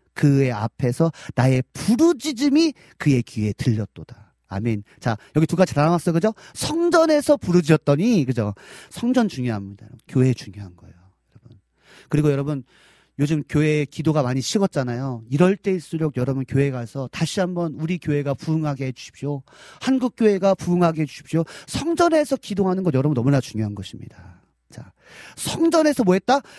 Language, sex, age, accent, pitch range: Korean, male, 40-59, native, 115-195 Hz